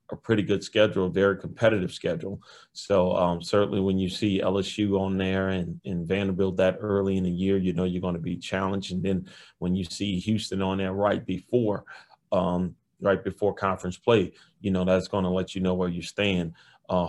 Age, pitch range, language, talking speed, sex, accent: 30-49, 90-100 Hz, English, 205 wpm, male, American